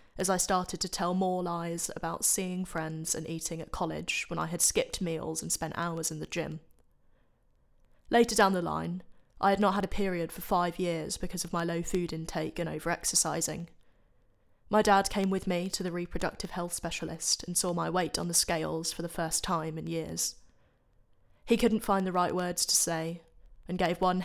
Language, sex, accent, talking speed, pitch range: English, female, British, 200 wpm, 165-195 Hz